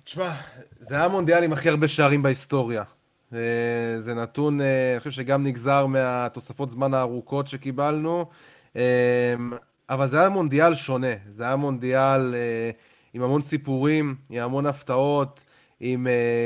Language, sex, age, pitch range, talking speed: Hebrew, male, 20-39, 130-165 Hz, 125 wpm